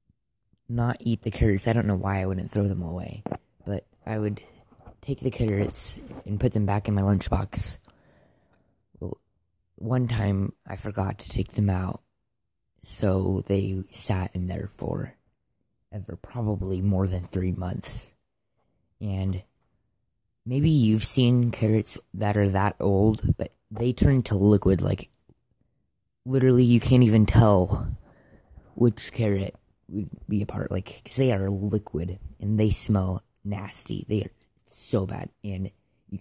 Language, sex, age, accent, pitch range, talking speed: English, female, 20-39, American, 95-110 Hz, 145 wpm